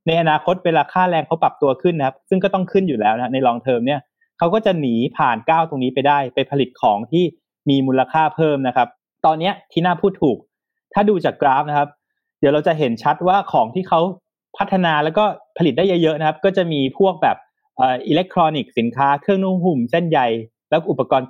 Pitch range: 135-175 Hz